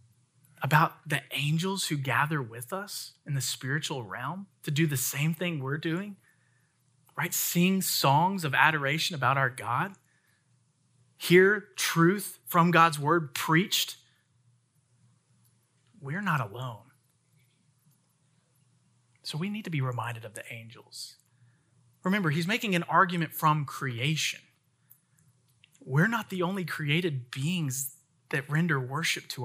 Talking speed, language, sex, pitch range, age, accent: 125 wpm, English, male, 130-180 Hz, 30-49, American